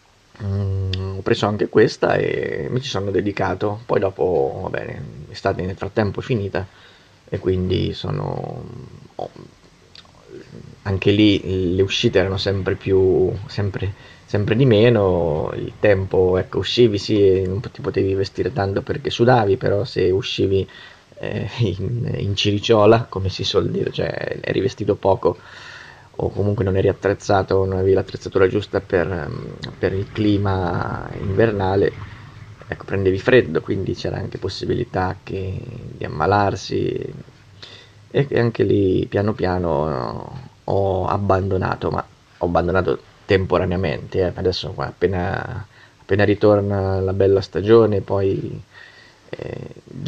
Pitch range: 95-115 Hz